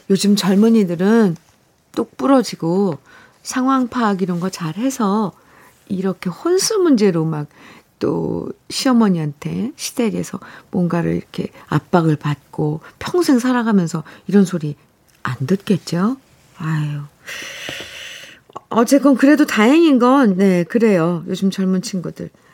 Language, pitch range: Korean, 170-235 Hz